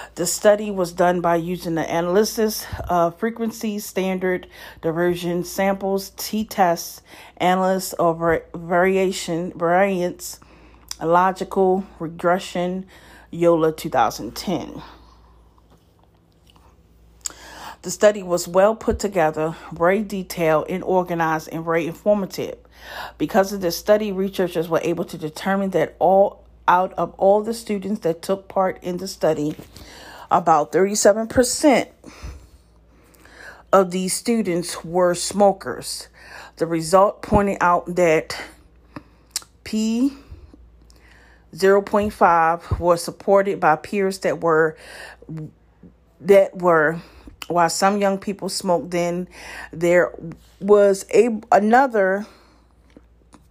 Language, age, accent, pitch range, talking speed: English, 40-59, American, 165-195 Hz, 100 wpm